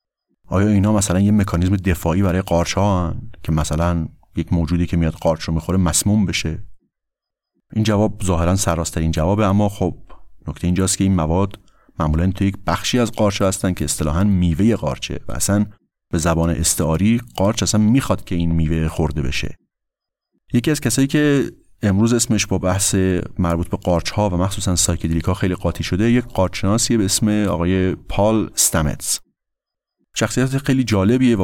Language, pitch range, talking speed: Persian, 85-105 Hz, 160 wpm